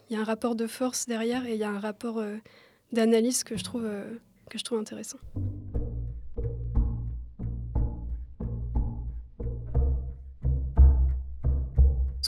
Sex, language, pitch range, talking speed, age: female, French, 210-240 Hz, 120 wpm, 20-39